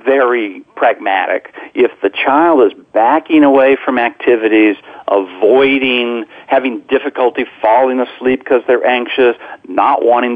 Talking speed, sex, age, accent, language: 115 wpm, male, 50-69, American, English